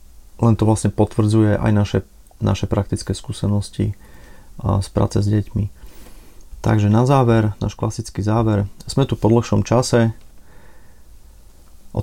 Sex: male